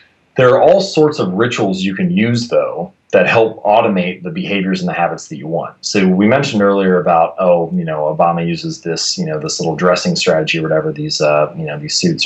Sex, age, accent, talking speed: male, 30-49, American, 220 wpm